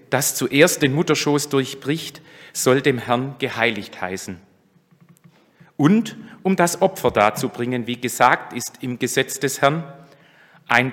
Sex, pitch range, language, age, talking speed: male, 110-145 Hz, German, 40-59, 125 wpm